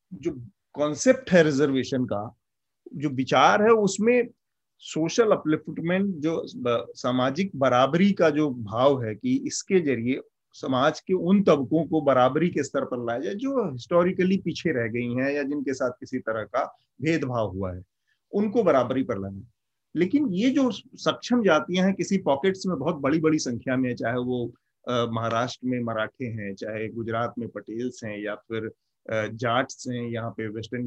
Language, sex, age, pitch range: Hindi, male, 30-49, 120-190 Hz